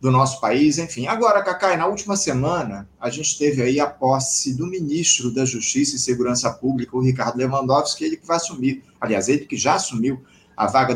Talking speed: 195 wpm